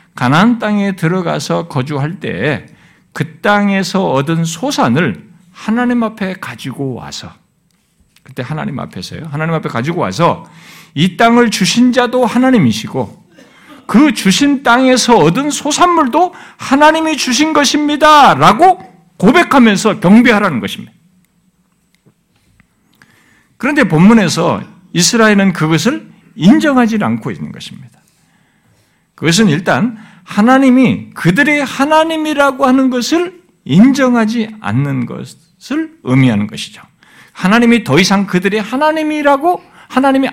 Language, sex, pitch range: Korean, male, 175-250 Hz